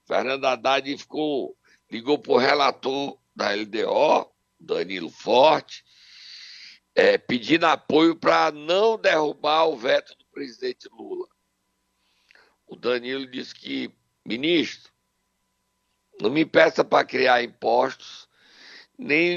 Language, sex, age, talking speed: Portuguese, male, 60-79, 105 wpm